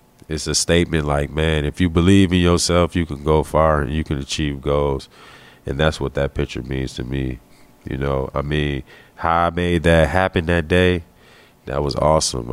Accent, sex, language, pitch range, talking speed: American, male, English, 75-85 Hz, 195 wpm